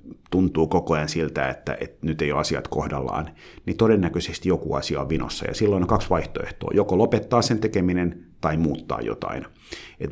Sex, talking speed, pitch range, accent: male, 180 wpm, 80-105 Hz, native